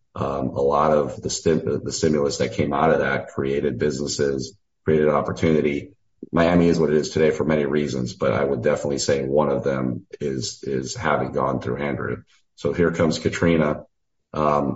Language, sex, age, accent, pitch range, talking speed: English, male, 40-59, American, 70-80 Hz, 185 wpm